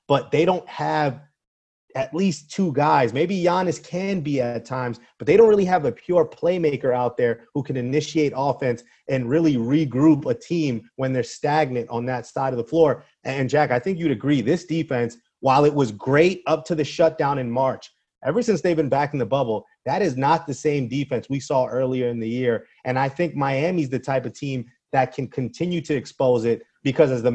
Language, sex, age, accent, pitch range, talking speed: English, male, 30-49, American, 125-160 Hz, 215 wpm